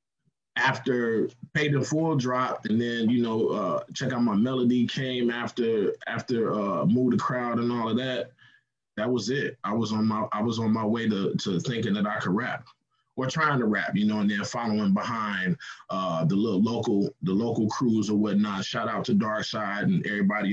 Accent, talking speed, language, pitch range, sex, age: American, 200 wpm, English, 110-130 Hz, male, 20-39